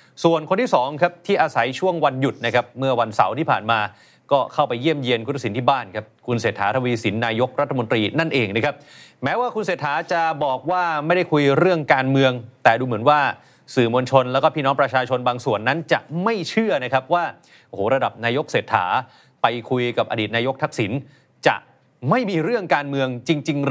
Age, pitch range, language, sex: 30-49, 130-170 Hz, Thai, male